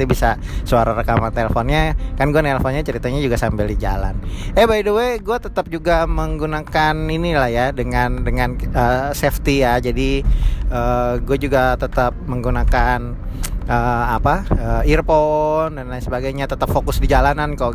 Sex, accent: male, native